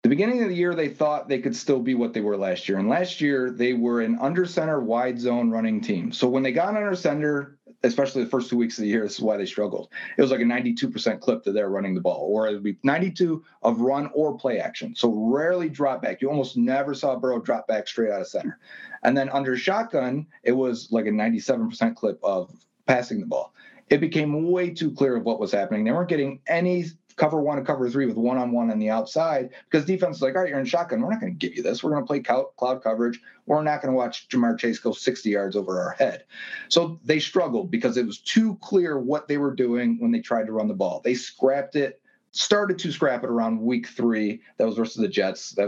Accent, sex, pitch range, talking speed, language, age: American, male, 120-155 Hz, 250 wpm, English, 30-49